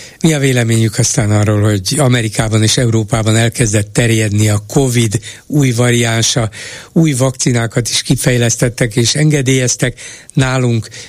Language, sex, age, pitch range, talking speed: Hungarian, male, 60-79, 110-130 Hz, 120 wpm